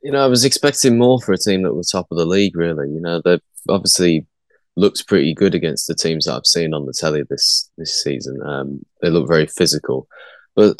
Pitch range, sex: 80-100 Hz, male